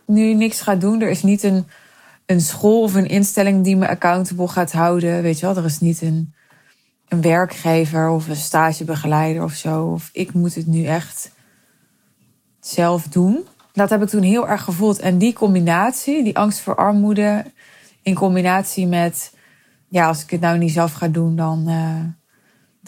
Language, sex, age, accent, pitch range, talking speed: Dutch, female, 20-39, Dutch, 165-200 Hz, 180 wpm